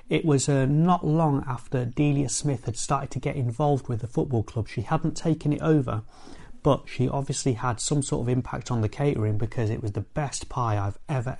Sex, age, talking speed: male, 30-49, 215 wpm